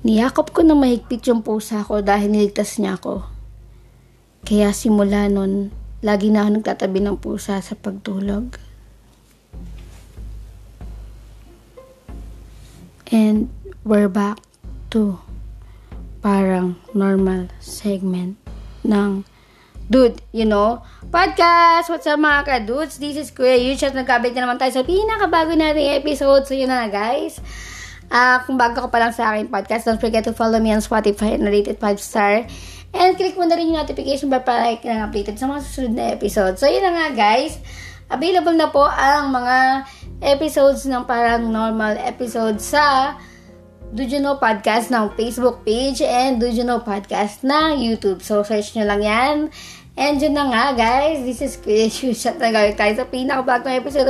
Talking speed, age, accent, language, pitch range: 155 wpm, 20-39, native, Filipino, 205-270 Hz